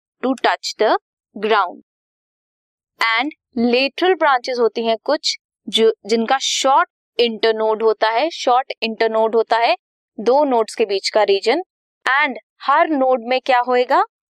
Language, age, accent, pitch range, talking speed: Hindi, 20-39, native, 220-300 Hz, 135 wpm